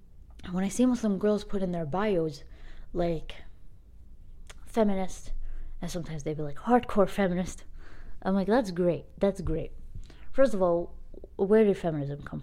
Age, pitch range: 20-39, 155-220 Hz